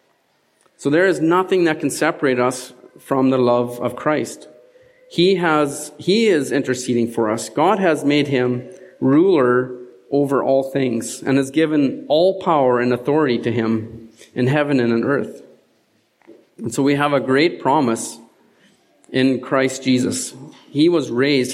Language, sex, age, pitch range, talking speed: English, male, 40-59, 120-150 Hz, 155 wpm